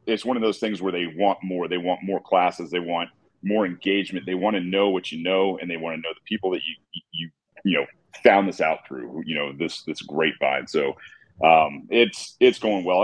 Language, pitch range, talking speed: English, 90-100 Hz, 235 wpm